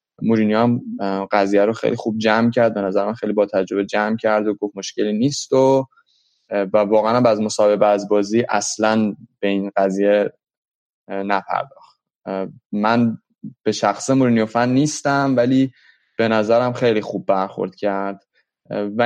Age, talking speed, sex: 20-39, 140 wpm, male